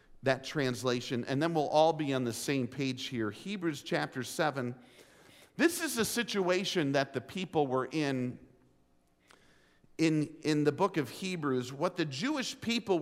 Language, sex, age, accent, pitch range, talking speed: English, male, 50-69, American, 130-180 Hz, 155 wpm